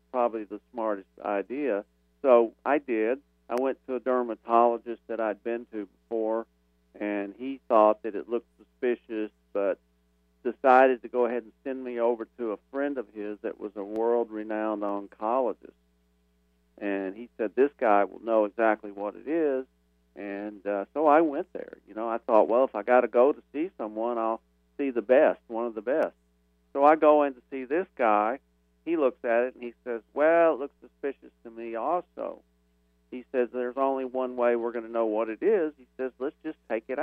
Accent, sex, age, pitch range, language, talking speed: American, male, 50-69, 100-125 Hz, English, 200 wpm